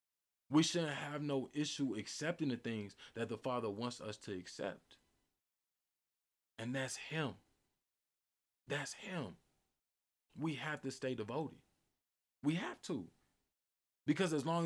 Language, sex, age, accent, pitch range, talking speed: English, male, 20-39, American, 115-145 Hz, 125 wpm